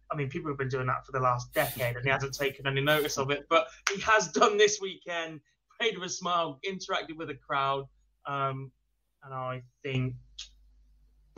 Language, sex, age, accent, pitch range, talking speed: English, male, 20-39, British, 130-155 Hz, 195 wpm